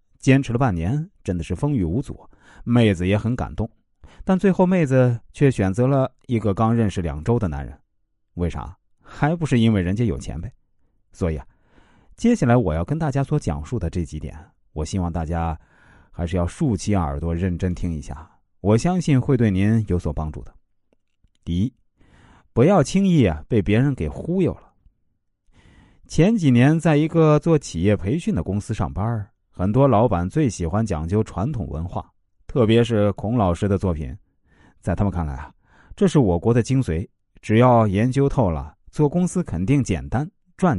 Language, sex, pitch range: Chinese, male, 90-130 Hz